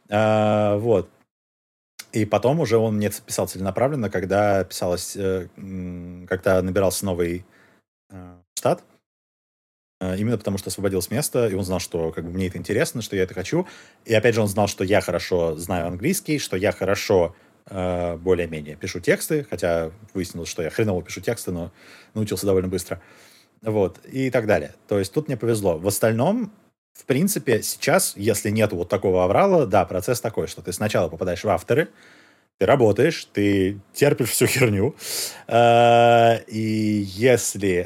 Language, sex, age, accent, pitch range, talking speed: Russian, male, 30-49, native, 90-115 Hz, 145 wpm